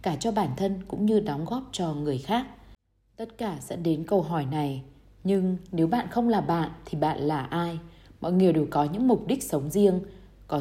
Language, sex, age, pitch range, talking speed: Vietnamese, female, 20-39, 150-200 Hz, 215 wpm